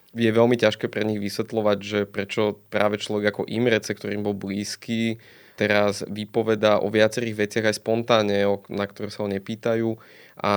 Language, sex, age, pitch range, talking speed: Slovak, male, 20-39, 100-110 Hz, 160 wpm